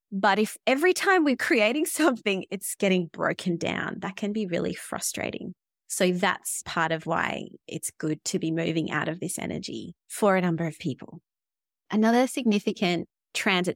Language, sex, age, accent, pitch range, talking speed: English, female, 20-39, Australian, 175-220 Hz, 165 wpm